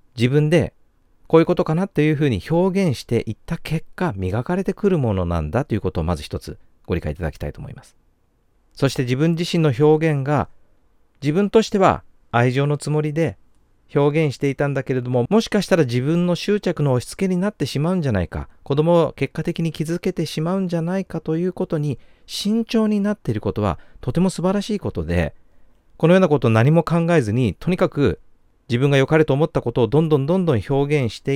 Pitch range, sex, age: 105-165 Hz, male, 40-59